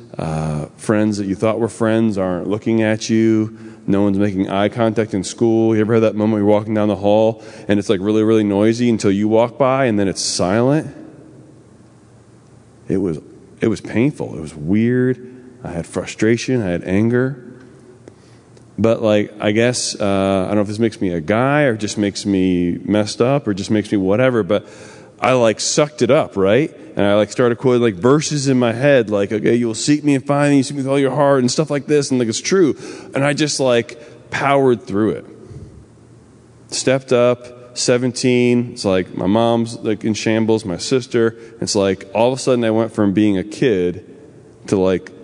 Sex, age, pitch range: male, 30-49, 105-125 Hz